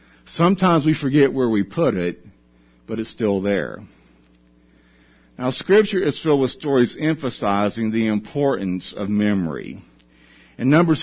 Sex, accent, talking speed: male, American, 130 wpm